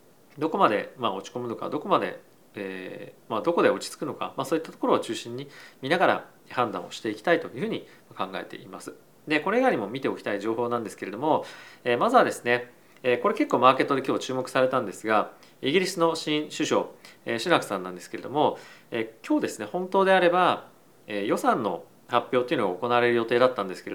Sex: male